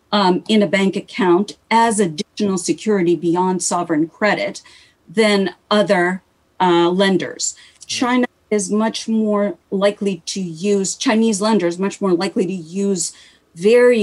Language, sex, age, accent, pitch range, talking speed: English, female, 40-59, American, 180-225 Hz, 130 wpm